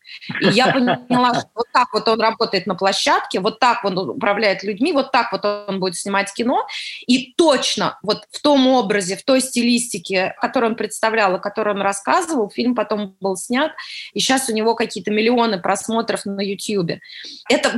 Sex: female